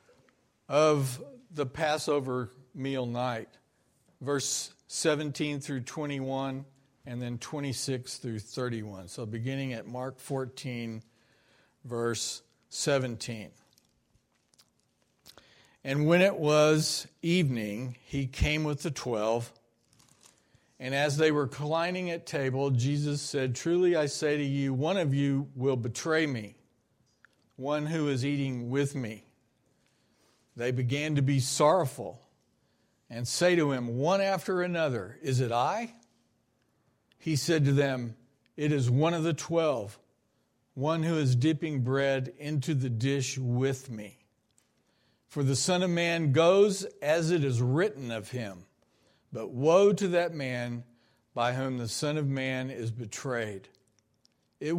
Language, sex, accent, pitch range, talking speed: English, male, American, 120-150 Hz, 130 wpm